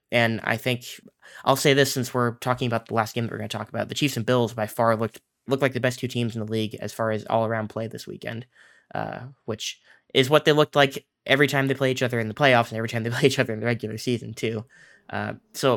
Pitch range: 115-130 Hz